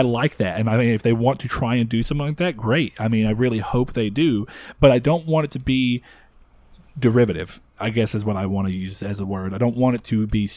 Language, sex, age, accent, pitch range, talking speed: English, male, 30-49, American, 110-135 Hz, 275 wpm